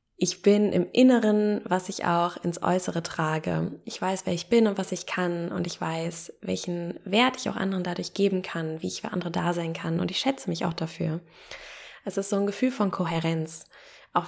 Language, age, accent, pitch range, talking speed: German, 20-39, German, 175-205 Hz, 215 wpm